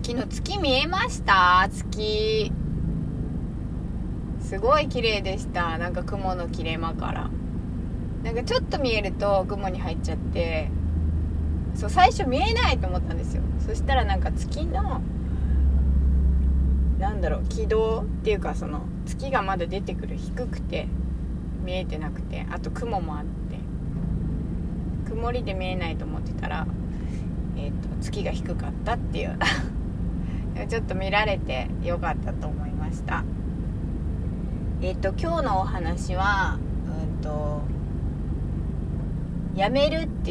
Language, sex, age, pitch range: Japanese, female, 20-39, 75-90 Hz